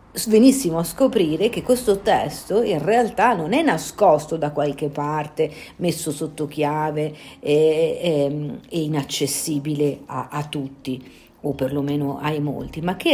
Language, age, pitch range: Italian, 50-69, 145-215 Hz